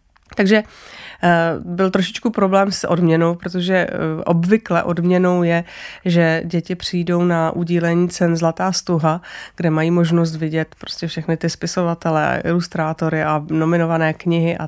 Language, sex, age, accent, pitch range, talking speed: Czech, female, 30-49, native, 165-185 Hz, 125 wpm